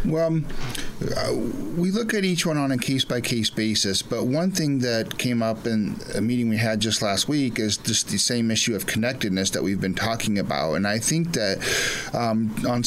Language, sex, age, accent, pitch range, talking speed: English, male, 40-59, American, 110-130 Hz, 195 wpm